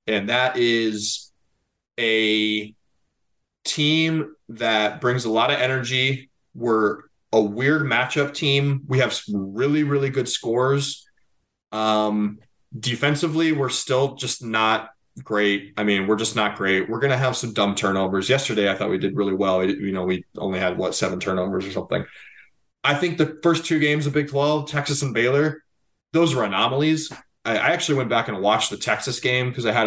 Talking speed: 175 wpm